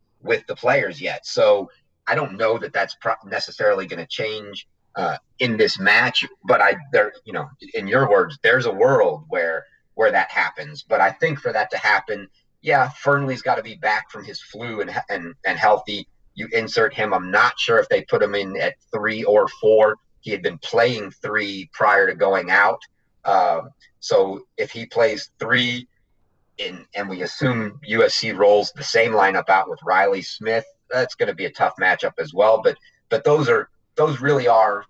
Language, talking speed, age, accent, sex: English, 190 wpm, 30-49, American, male